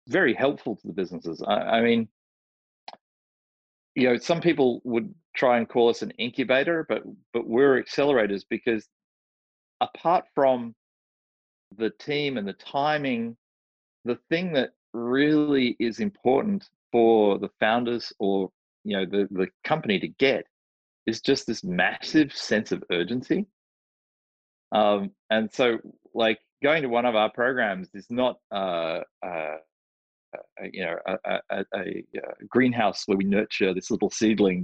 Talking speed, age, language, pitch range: 140 wpm, 40-59, English, 100-135 Hz